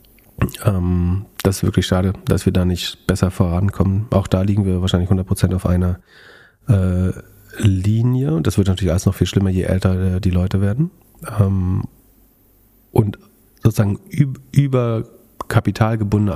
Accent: German